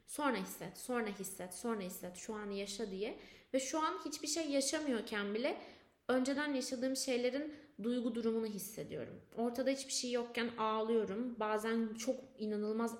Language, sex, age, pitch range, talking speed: Turkish, female, 20-39, 220-285 Hz, 145 wpm